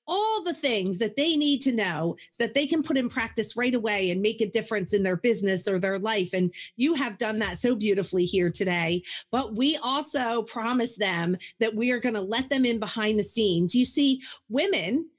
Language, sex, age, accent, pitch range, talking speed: English, female, 40-59, American, 220-300 Hz, 215 wpm